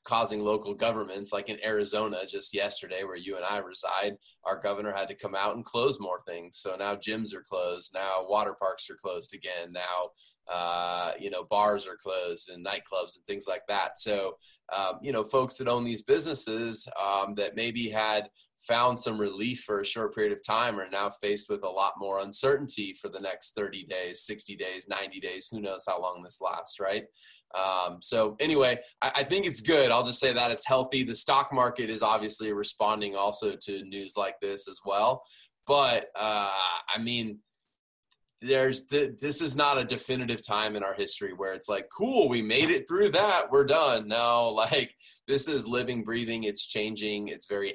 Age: 20-39